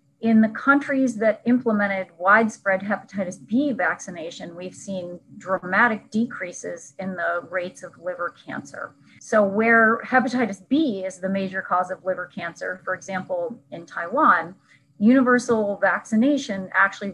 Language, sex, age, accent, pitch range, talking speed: English, female, 30-49, American, 185-230 Hz, 130 wpm